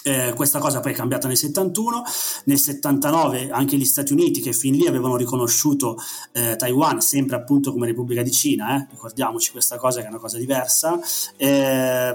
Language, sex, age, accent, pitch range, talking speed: Italian, male, 30-49, native, 120-150 Hz, 185 wpm